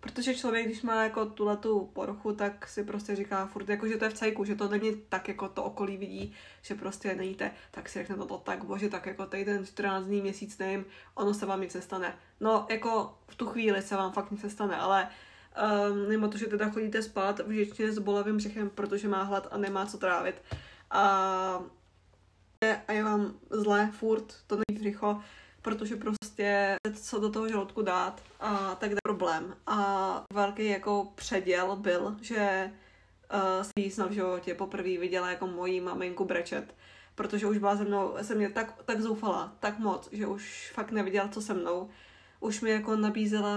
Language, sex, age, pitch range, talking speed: Czech, female, 20-39, 195-215 Hz, 190 wpm